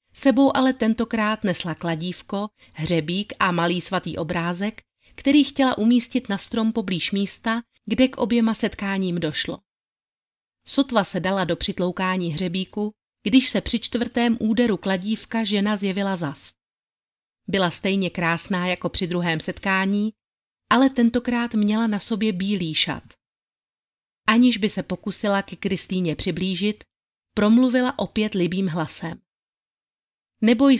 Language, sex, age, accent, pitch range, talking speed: Czech, female, 30-49, native, 180-220 Hz, 125 wpm